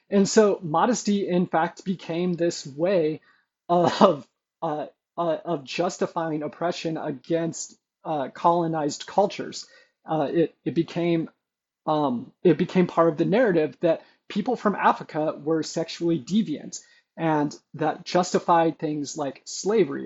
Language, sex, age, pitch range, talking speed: English, male, 30-49, 155-185 Hz, 125 wpm